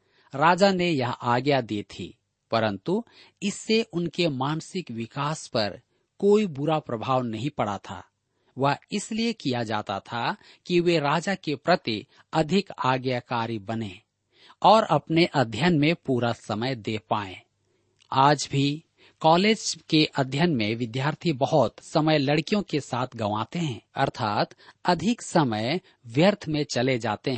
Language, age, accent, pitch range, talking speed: Hindi, 40-59, native, 120-175 Hz, 130 wpm